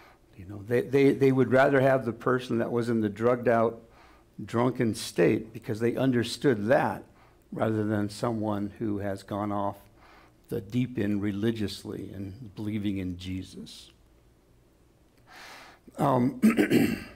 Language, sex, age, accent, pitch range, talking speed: English, male, 60-79, American, 105-120 Hz, 130 wpm